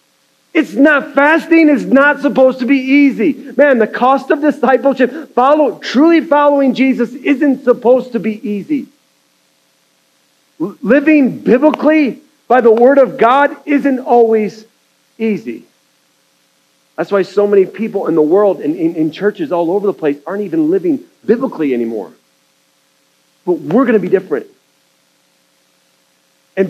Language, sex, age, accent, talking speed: English, male, 40-59, American, 135 wpm